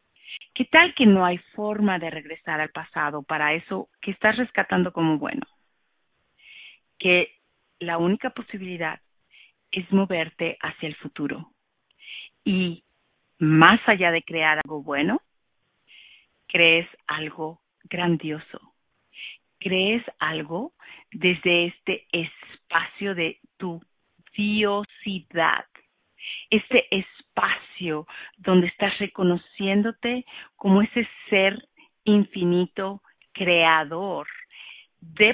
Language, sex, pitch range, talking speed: English, female, 165-205 Hz, 95 wpm